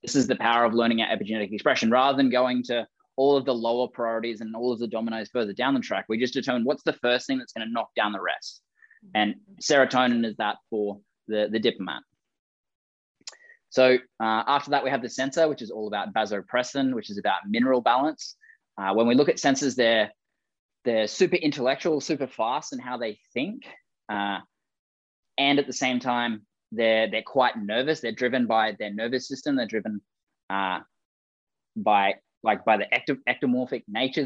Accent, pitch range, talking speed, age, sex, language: Australian, 110-140 Hz, 185 wpm, 20-39, male, English